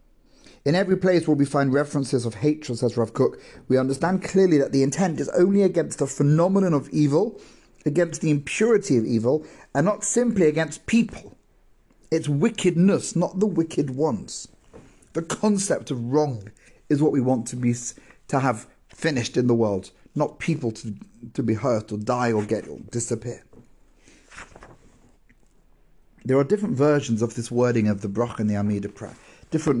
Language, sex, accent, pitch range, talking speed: English, male, British, 120-165 Hz, 170 wpm